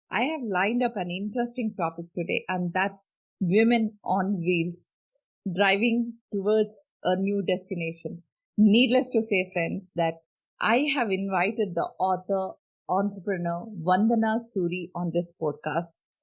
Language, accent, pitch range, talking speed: English, Indian, 185-235 Hz, 125 wpm